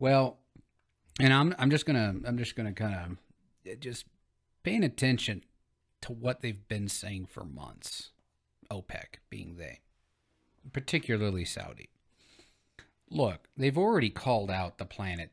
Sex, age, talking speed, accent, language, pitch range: male, 40-59, 130 wpm, American, English, 100-140 Hz